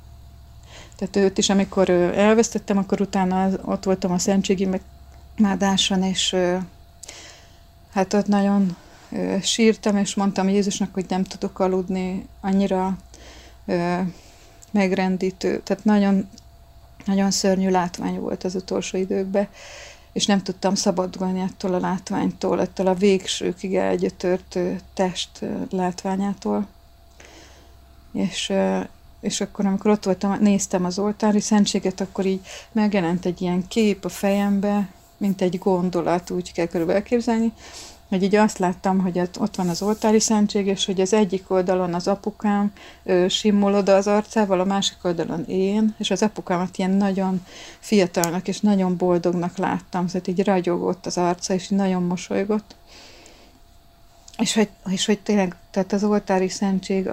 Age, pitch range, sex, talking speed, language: 30-49, 180-200 Hz, female, 130 wpm, Hungarian